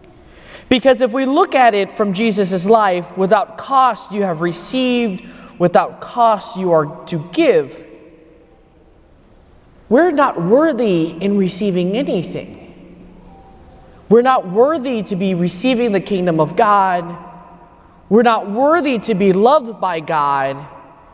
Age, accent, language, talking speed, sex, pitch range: 20-39, American, English, 125 wpm, male, 175-255 Hz